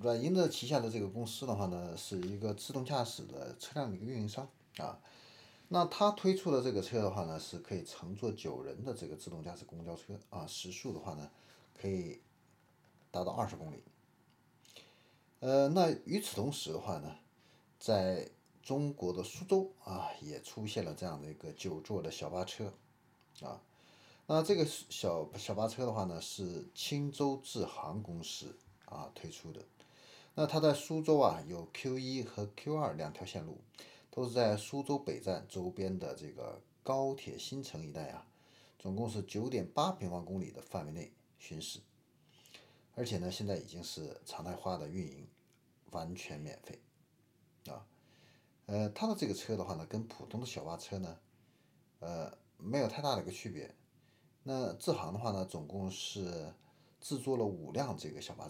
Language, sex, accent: Chinese, male, native